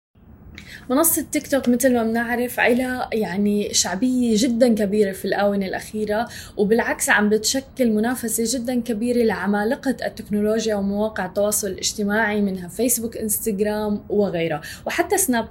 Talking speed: 120 wpm